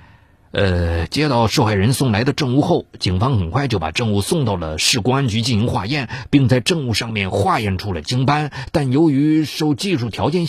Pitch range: 100-165 Hz